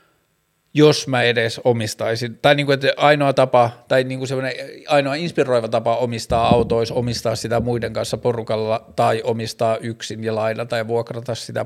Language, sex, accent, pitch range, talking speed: Finnish, male, native, 115-130 Hz, 160 wpm